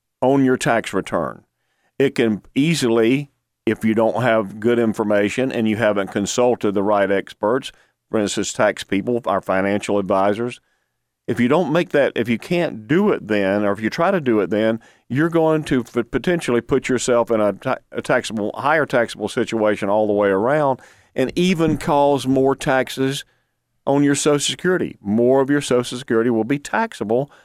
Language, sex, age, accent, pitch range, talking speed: English, male, 40-59, American, 110-145 Hz, 175 wpm